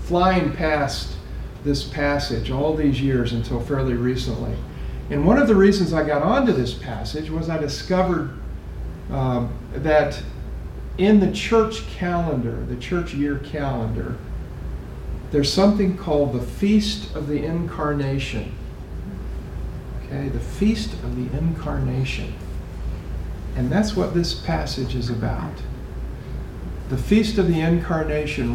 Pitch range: 110-155 Hz